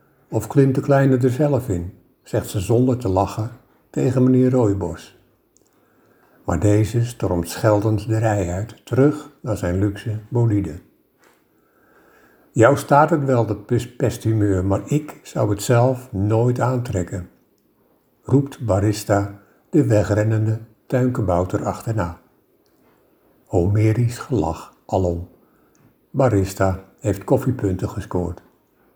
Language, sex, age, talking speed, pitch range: Dutch, male, 60-79, 110 wpm, 100-120 Hz